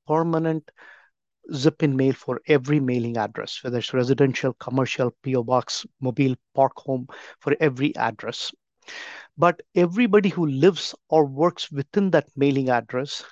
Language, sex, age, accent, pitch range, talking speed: English, male, 50-69, Indian, 135-160 Hz, 130 wpm